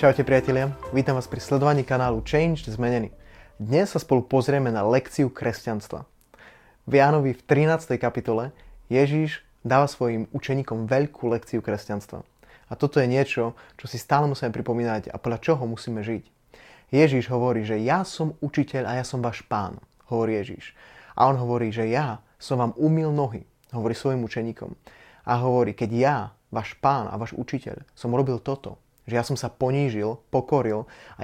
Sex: male